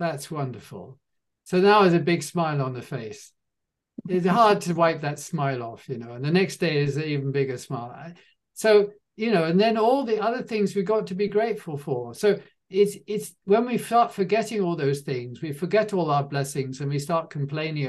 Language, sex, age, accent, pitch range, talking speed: English, male, 50-69, British, 140-190 Hz, 210 wpm